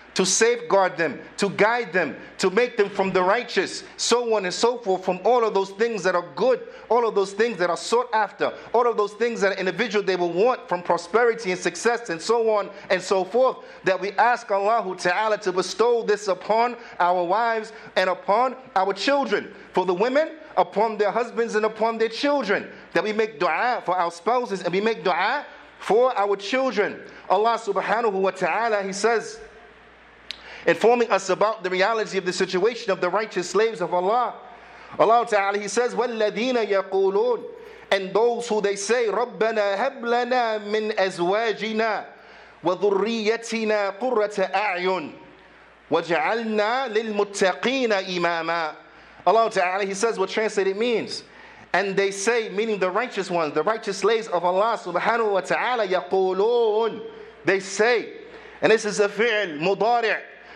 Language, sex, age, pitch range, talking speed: English, male, 50-69, 190-230 Hz, 160 wpm